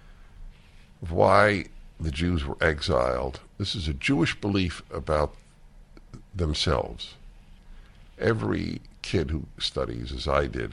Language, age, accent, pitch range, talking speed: English, 60-79, American, 70-90 Hz, 105 wpm